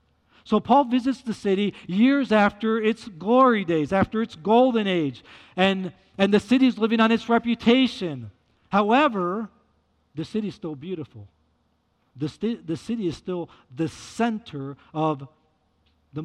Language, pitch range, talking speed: English, 145-210 Hz, 145 wpm